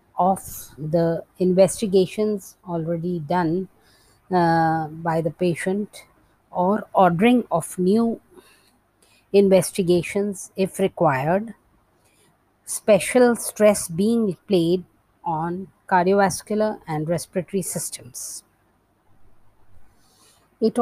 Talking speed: 75 wpm